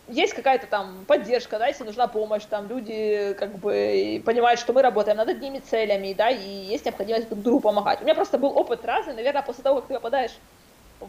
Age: 20-39